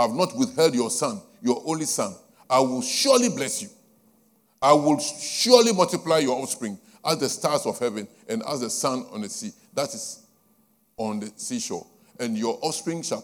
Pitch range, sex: 155-225 Hz, male